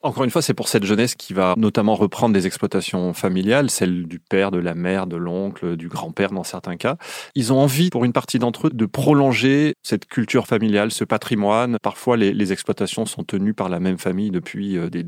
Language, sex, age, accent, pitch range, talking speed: French, male, 30-49, French, 95-130 Hz, 215 wpm